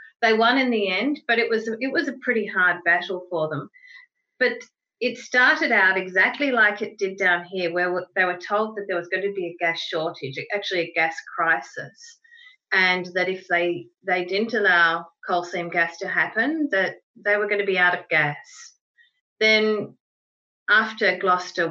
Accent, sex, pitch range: Australian, female, 175-235 Hz